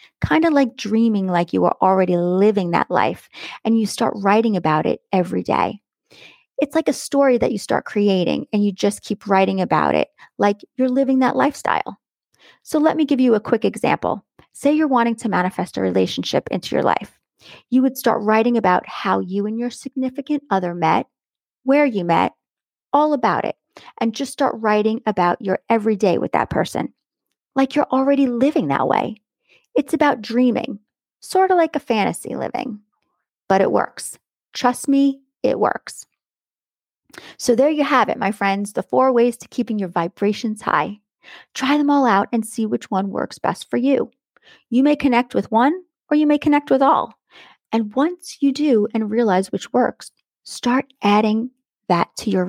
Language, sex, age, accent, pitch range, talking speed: English, female, 30-49, American, 205-275 Hz, 180 wpm